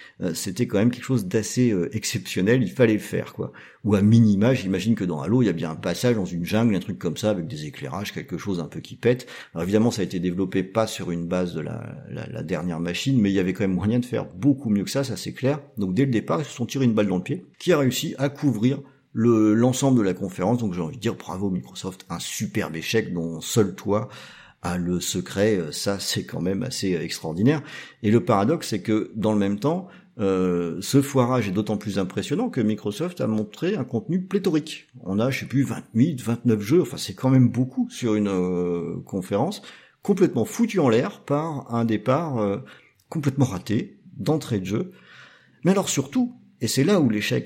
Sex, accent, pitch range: male, French, 100-140 Hz